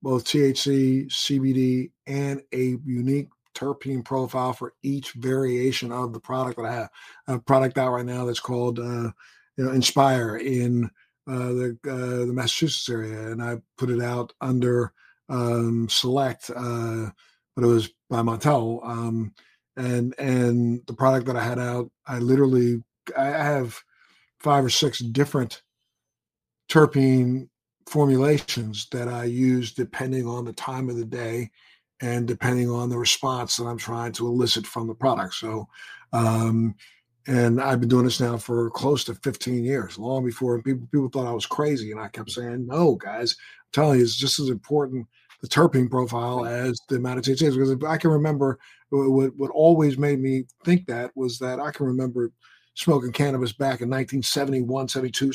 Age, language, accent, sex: 50-69, English, American, male